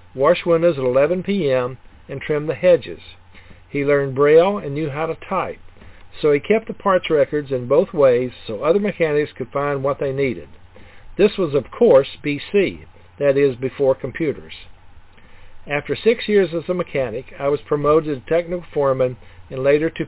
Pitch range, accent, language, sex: 120-160 Hz, American, English, male